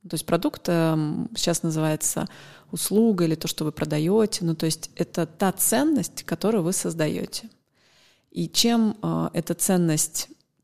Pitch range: 160-200 Hz